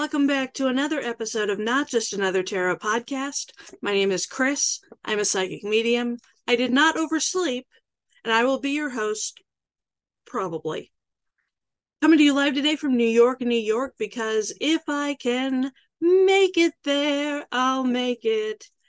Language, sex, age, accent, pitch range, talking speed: English, female, 40-59, American, 225-320 Hz, 160 wpm